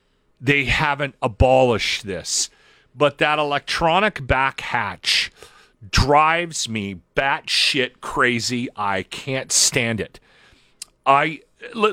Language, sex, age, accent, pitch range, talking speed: English, male, 40-59, American, 135-175 Hz, 95 wpm